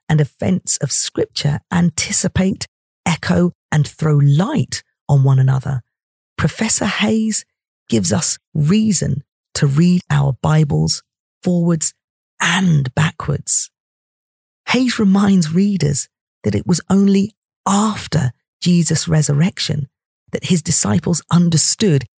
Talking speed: 105 wpm